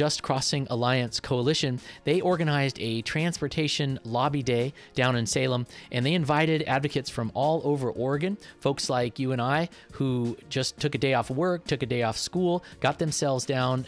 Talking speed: 175 wpm